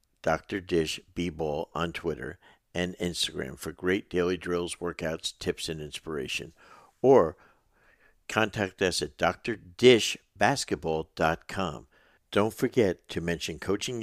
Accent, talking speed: American, 105 wpm